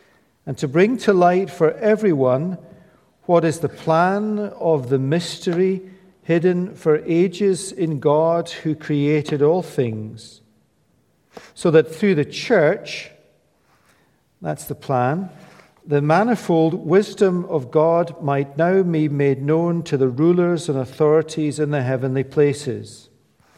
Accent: British